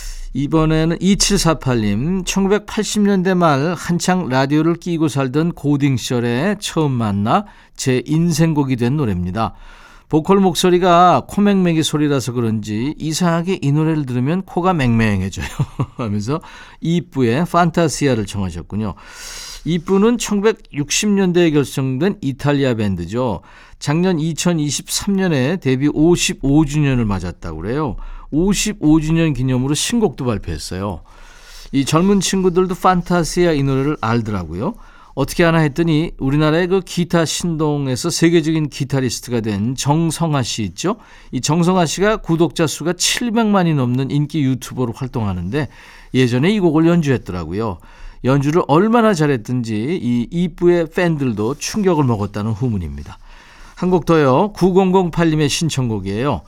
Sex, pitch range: male, 125-175 Hz